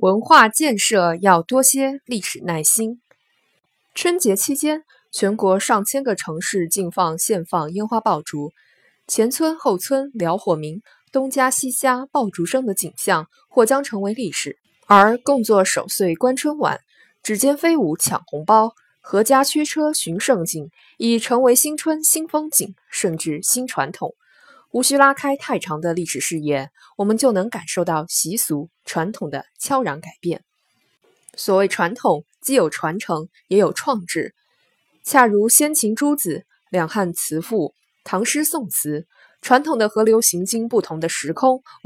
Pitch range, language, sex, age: 170-260 Hz, Chinese, female, 20-39